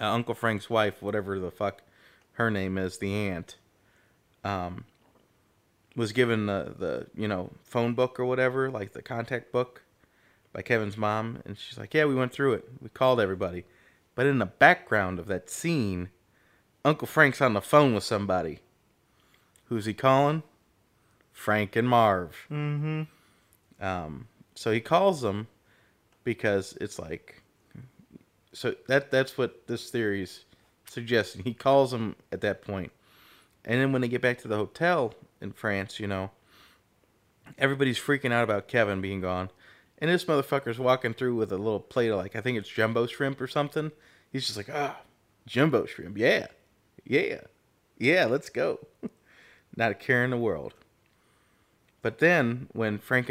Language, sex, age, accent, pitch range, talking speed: English, male, 30-49, American, 100-130 Hz, 160 wpm